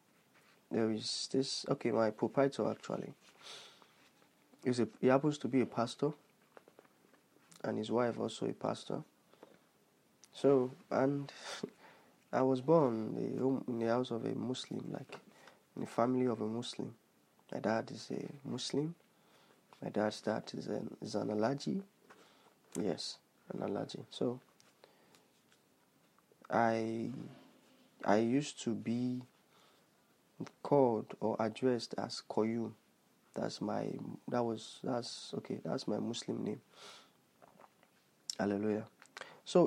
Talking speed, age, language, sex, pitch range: 125 wpm, 30-49, English, male, 115-140 Hz